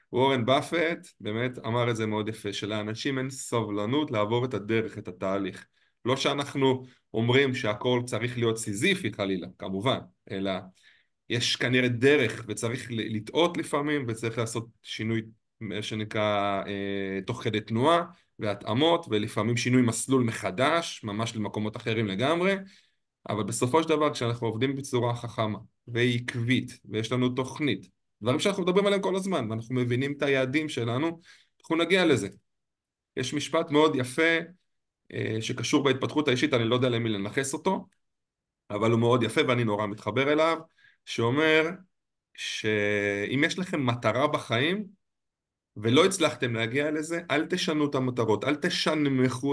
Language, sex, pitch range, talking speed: Hebrew, male, 110-150 Hz, 135 wpm